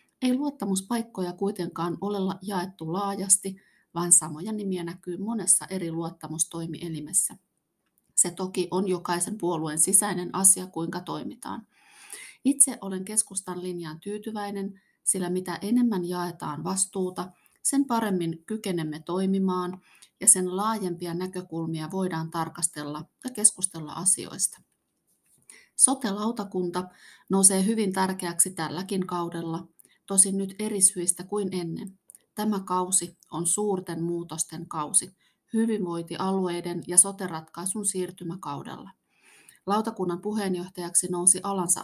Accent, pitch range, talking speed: native, 170-195 Hz, 100 wpm